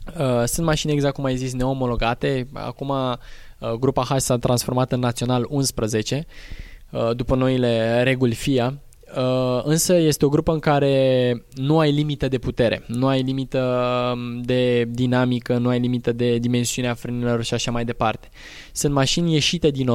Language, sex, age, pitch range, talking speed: Romanian, male, 20-39, 120-140 Hz, 145 wpm